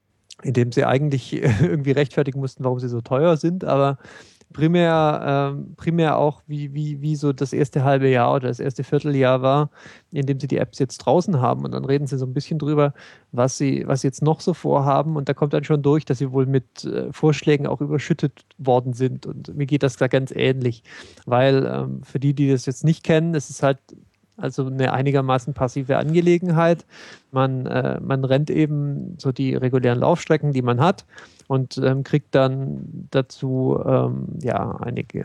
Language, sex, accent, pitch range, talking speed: German, male, German, 130-155 Hz, 190 wpm